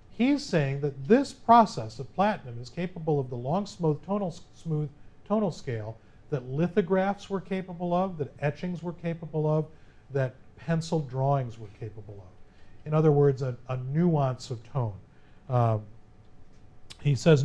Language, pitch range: English, 115-155 Hz